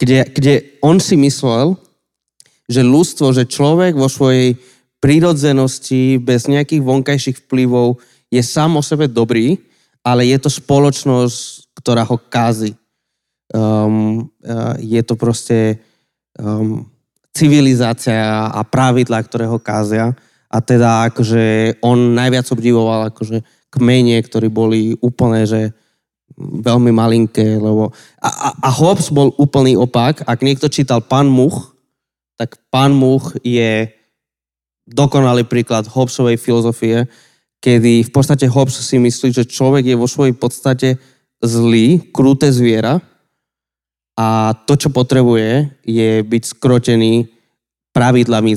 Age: 20-39